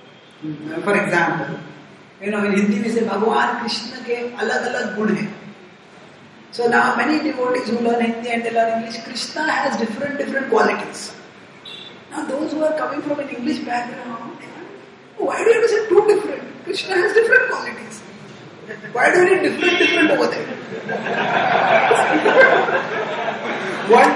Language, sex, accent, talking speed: English, female, Indian, 150 wpm